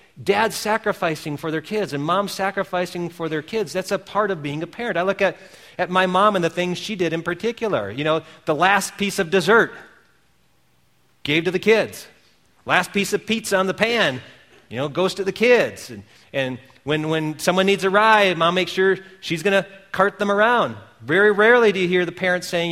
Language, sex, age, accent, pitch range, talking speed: English, male, 40-59, American, 155-205 Hz, 210 wpm